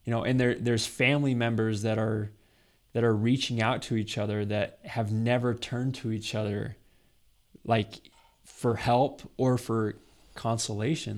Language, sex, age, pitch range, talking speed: English, male, 20-39, 105-120 Hz, 155 wpm